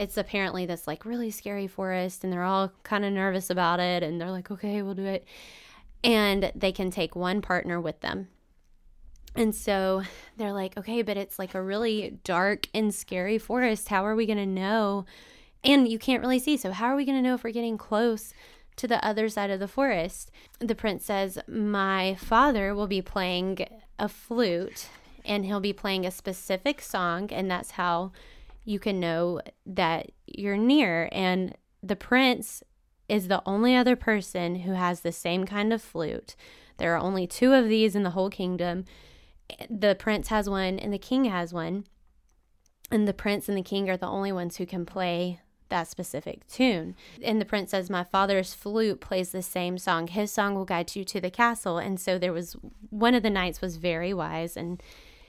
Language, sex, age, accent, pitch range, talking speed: English, female, 20-39, American, 180-220 Hz, 195 wpm